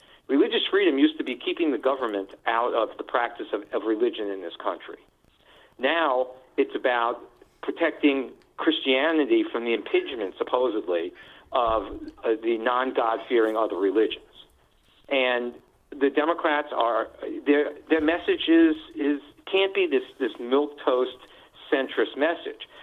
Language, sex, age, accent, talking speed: English, male, 50-69, American, 130 wpm